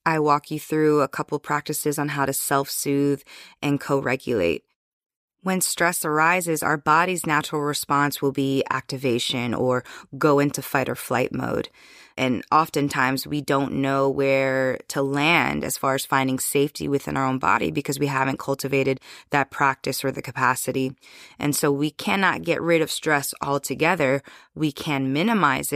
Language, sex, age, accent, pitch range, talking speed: English, female, 20-39, American, 135-150 Hz, 160 wpm